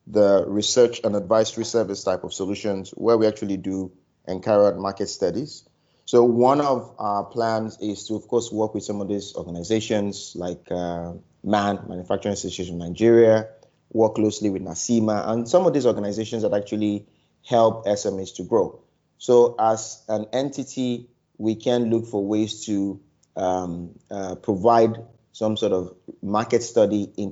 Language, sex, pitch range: English, male, 95-115 Hz